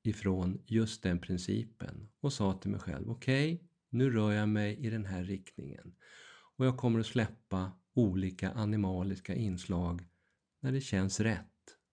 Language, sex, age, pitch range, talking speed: Swedish, male, 50-69, 95-115 Hz, 155 wpm